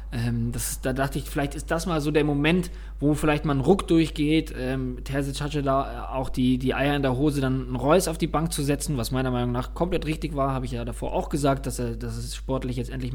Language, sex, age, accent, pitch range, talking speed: German, male, 20-39, German, 125-155 Hz, 265 wpm